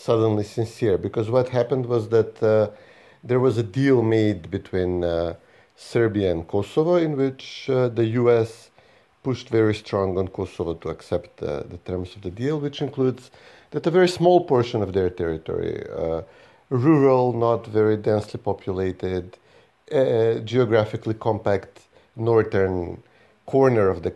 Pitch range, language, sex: 100-125 Hz, English, male